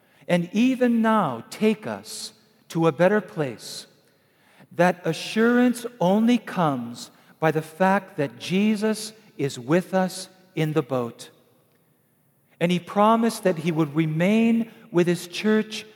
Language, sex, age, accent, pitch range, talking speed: English, male, 50-69, American, 155-215 Hz, 130 wpm